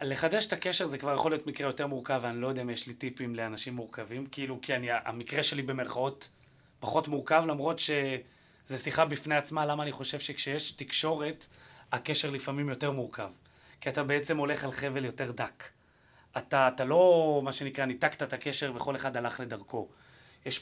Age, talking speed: 30-49, 180 wpm